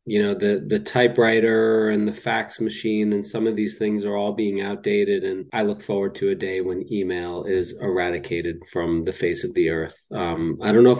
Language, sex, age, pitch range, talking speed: English, male, 30-49, 95-120 Hz, 220 wpm